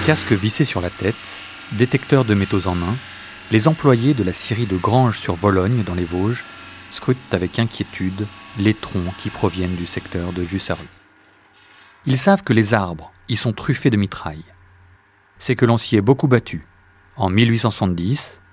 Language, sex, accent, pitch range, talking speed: French, male, French, 95-120 Hz, 170 wpm